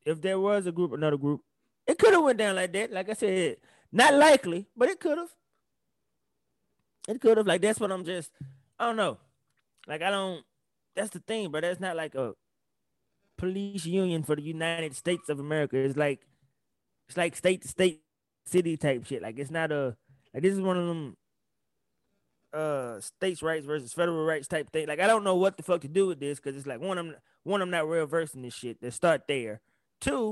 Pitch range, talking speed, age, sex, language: 140-190 Hz, 215 wpm, 20-39, male, English